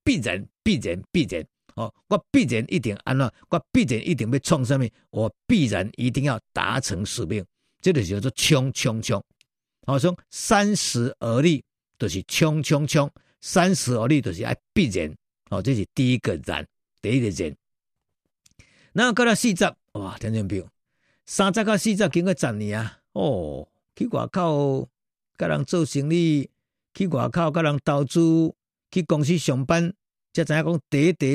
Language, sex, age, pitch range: Chinese, male, 50-69, 135-195 Hz